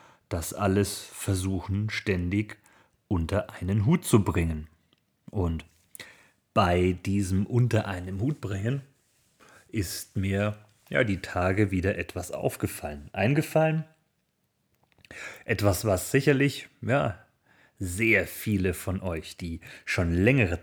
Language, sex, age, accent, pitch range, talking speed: German, male, 30-49, German, 95-125 Hz, 100 wpm